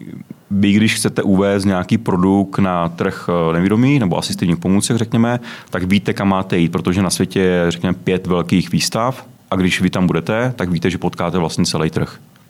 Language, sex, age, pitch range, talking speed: Czech, male, 30-49, 85-95 Hz, 180 wpm